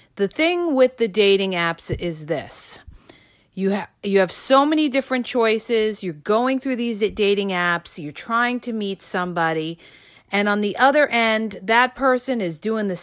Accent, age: American, 40-59